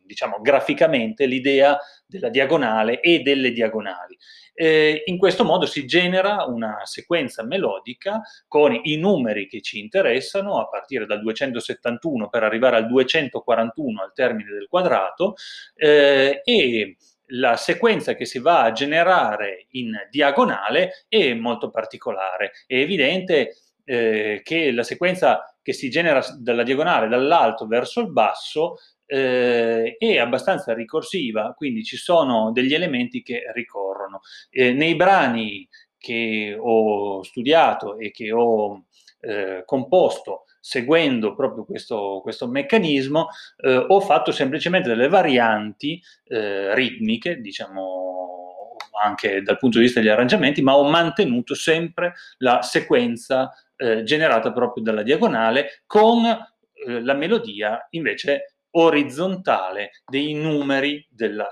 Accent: native